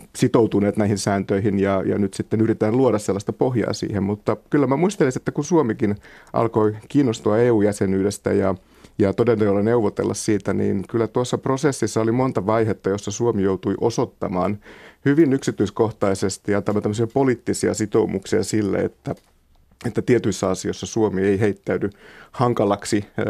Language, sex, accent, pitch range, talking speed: Finnish, male, native, 100-120 Hz, 135 wpm